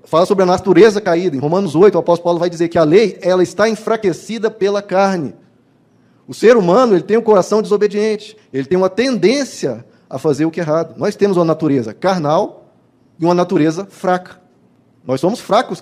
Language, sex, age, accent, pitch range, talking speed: Portuguese, male, 20-39, Brazilian, 165-210 Hz, 185 wpm